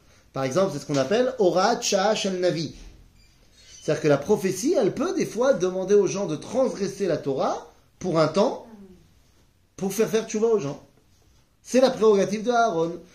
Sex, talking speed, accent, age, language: male, 170 wpm, French, 30-49, French